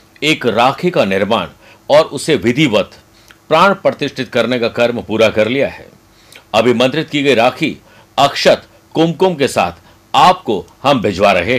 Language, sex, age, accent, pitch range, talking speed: Hindi, male, 50-69, native, 105-135 Hz, 150 wpm